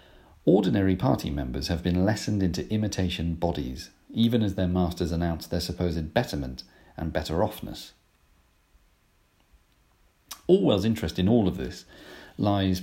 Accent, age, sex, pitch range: British, 40-59, male, 80-100 Hz